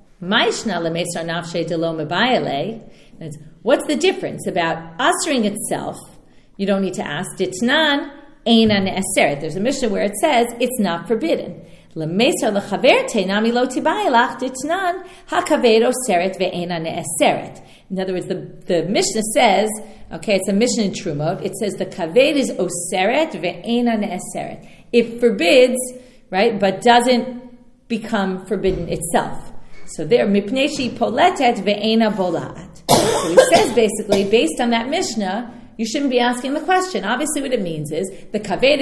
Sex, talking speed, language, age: female, 120 wpm, English, 40-59